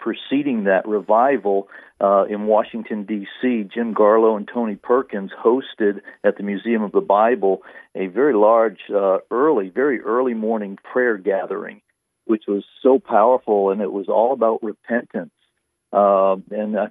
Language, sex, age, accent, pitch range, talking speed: English, male, 50-69, American, 100-115 Hz, 150 wpm